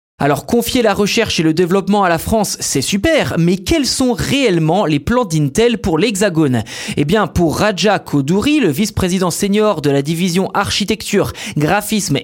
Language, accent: French, French